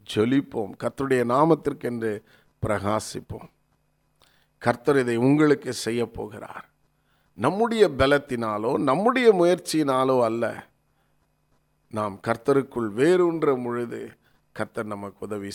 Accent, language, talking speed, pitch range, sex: native, Tamil, 85 wpm, 115-155 Hz, male